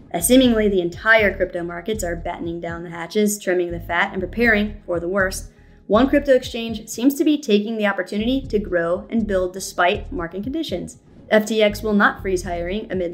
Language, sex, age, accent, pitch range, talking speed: English, female, 30-49, American, 185-220 Hz, 185 wpm